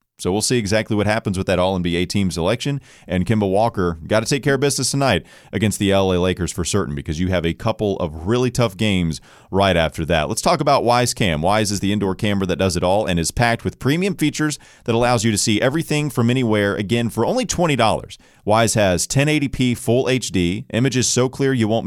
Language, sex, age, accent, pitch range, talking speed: English, male, 30-49, American, 95-125 Hz, 220 wpm